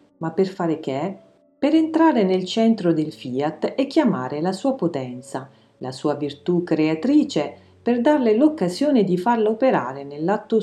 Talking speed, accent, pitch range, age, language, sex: 145 wpm, native, 155-215 Hz, 40-59, Italian, female